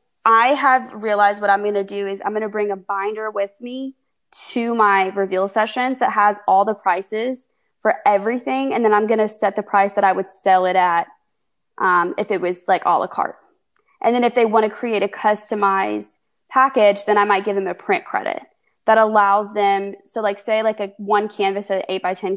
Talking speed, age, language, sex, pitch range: 220 wpm, 20-39, English, female, 195-245 Hz